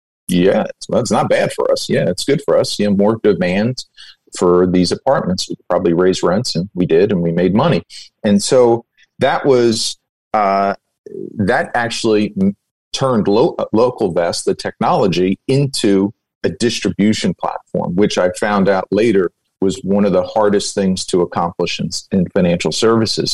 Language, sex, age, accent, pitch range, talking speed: English, male, 40-59, American, 95-115 Hz, 165 wpm